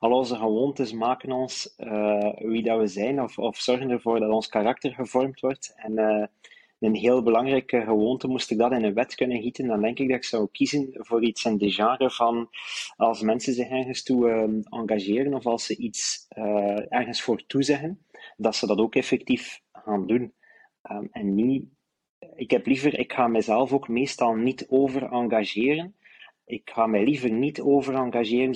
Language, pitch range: Dutch, 110-130 Hz